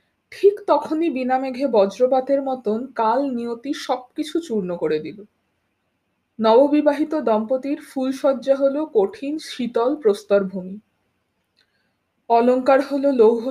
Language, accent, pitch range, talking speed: Bengali, native, 215-290 Hz, 100 wpm